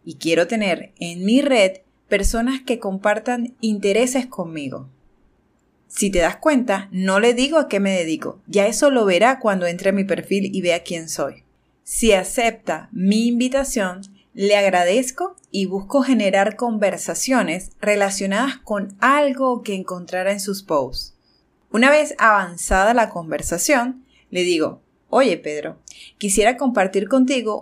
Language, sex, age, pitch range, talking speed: Spanish, female, 30-49, 185-245 Hz, 140 wpm